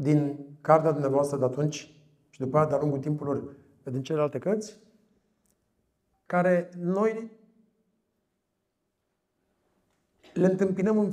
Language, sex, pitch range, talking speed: Romanian, male, 135-180 Hz, 100 wpm